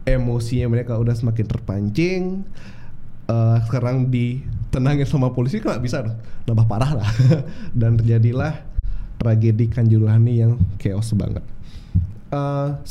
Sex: male